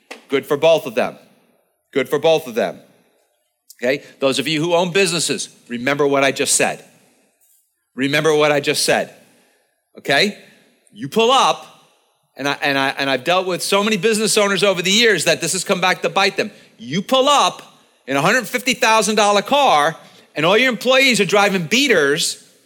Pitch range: 150-215 Hz